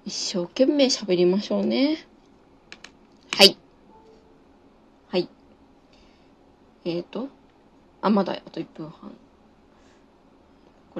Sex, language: female, Japanese